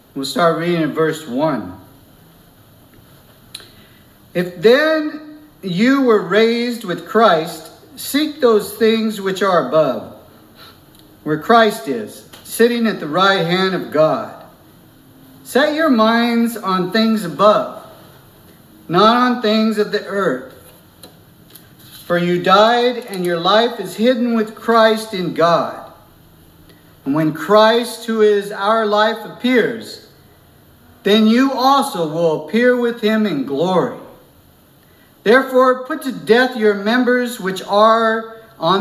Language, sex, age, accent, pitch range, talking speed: English, male, 50-69, American, 175-230 Hz, 120 wpm